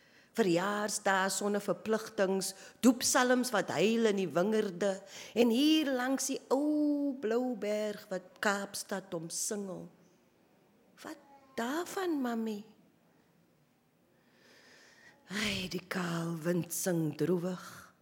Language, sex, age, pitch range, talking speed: English, female, 40-59, 175-245 Hz, 105 wpm